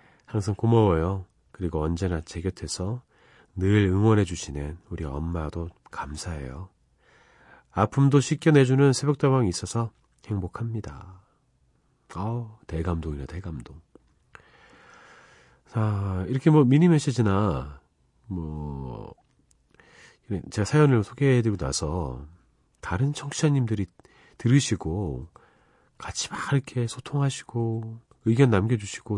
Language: Korean